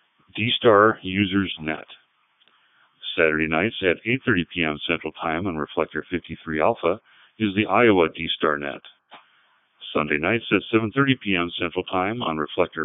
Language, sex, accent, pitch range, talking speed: English, male, American, 85-115 Hz, 160 wpm